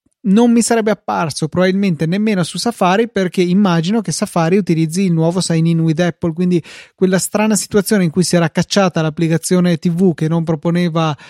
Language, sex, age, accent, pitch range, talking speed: Italian, male, 20-39, native, 160-190 Hz, 175 wpm